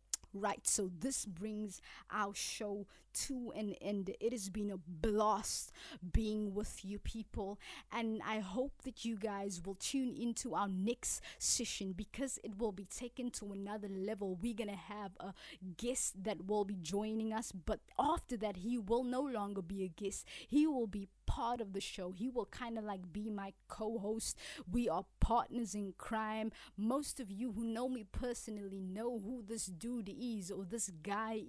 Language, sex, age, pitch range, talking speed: English, female, 20-39, 200-245 Hz, 175 wpm